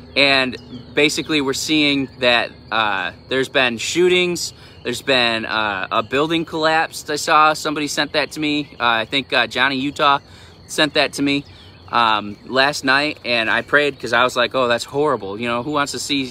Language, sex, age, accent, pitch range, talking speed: English, male, 20-39, American, 120-150 Hz, 190 wpm